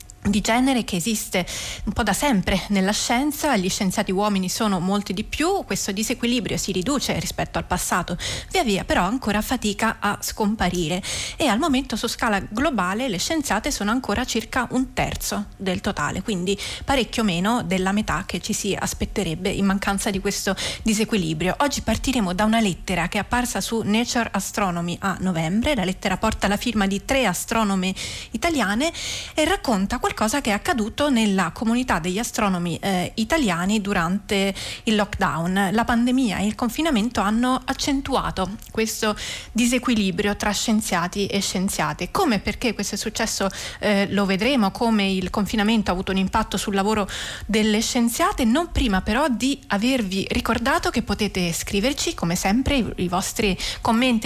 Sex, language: female, Italian